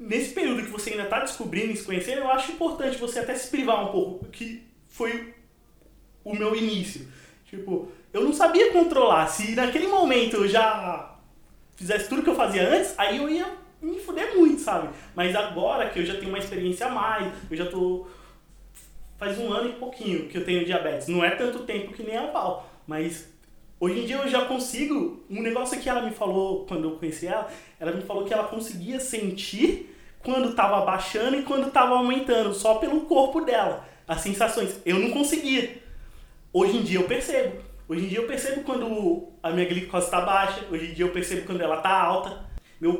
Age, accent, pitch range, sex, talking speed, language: 20-39, Brazilian, 180-260 Hz, male, 195 wpm, Portuguese